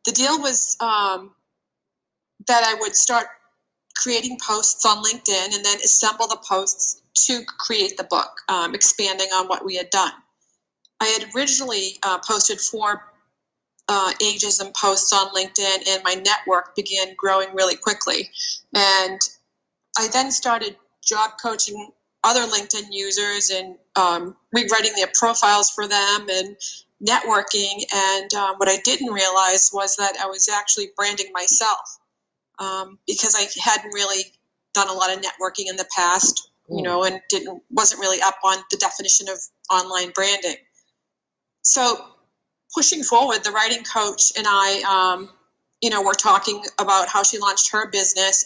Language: English